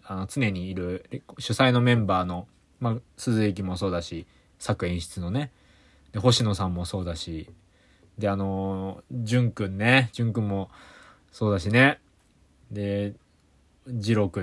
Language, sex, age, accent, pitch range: Japanese, male, 20-39, native, 90-130 Hz